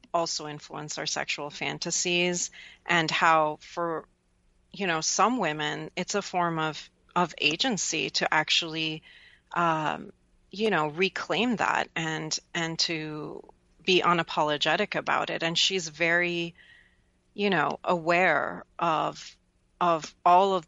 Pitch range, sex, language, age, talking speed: 155-180 Hz, female, English, 30-49, 120 wpm